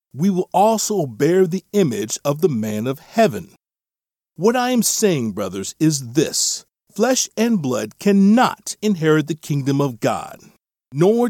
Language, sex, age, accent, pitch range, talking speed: English, male, 50-69, American, 140-210 Hz, 150 wpm